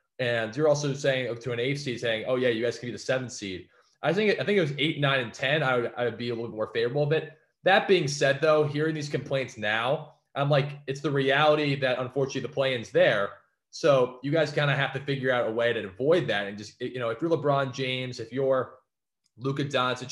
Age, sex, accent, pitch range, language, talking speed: 20-39, male, American, 120-150 Hz, English, 250 wpm